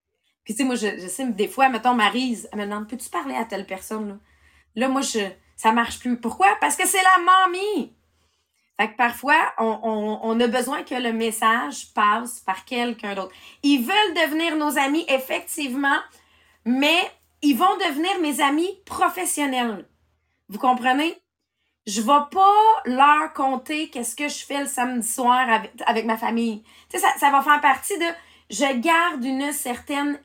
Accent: Canadian